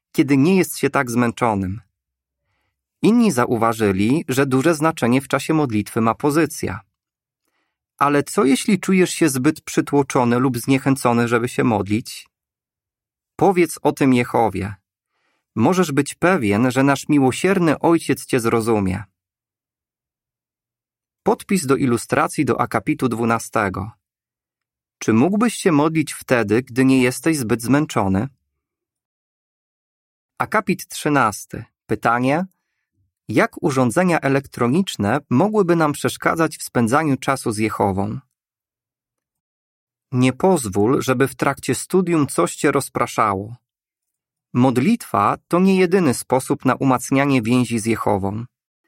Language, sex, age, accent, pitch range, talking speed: Polish, male, 30-49, native, 115-155 Hz, 110 wpm